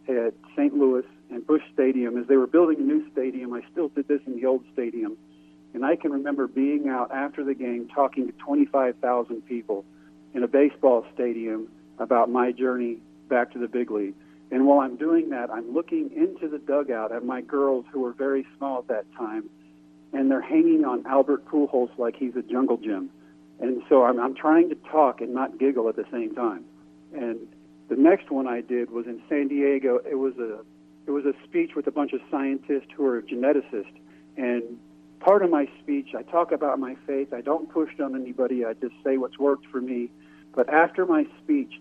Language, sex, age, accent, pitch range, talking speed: English, male, 50-69, American, 120-145 Hz, 205 wpm